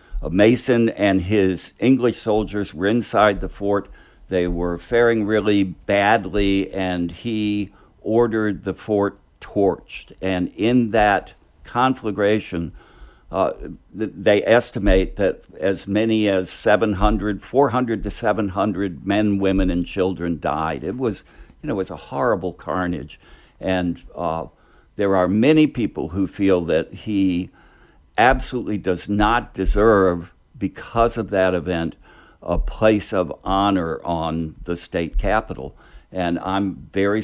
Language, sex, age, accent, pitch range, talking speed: English, male, 60-79, American, 90-105 Hz, 125 wpm